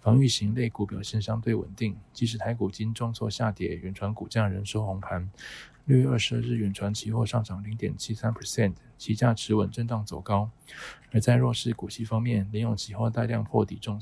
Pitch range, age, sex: 105-120 Hz, 20-39, male